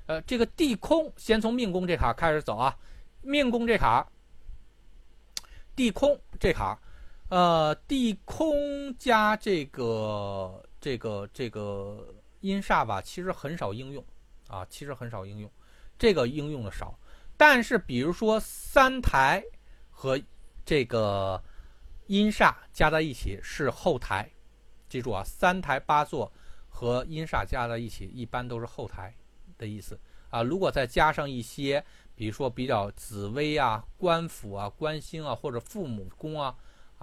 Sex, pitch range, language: male, 105-170 Hz, Chinese